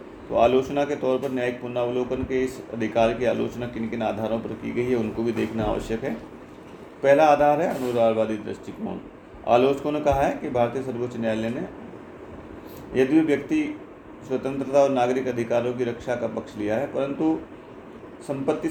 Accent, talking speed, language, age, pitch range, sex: native, 170 wpm, Hindi, 40-59, 115-130 Hz, male